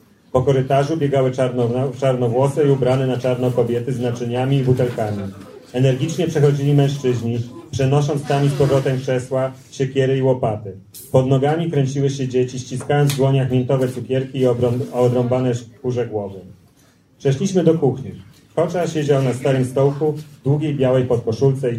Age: 40-59